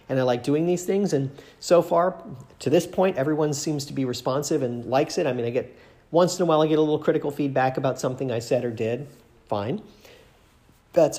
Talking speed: 225 wpm